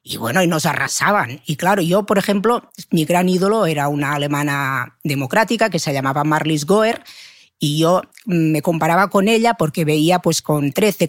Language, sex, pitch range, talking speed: Spanish, female, 140-180 Hz, 180 wpm